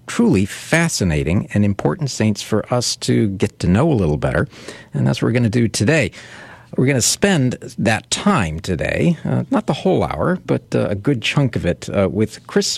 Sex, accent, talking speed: male, American, 205 wpm